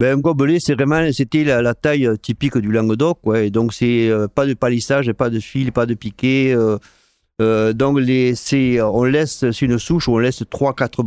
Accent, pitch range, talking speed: French, 115-135 Hz, 215 wpm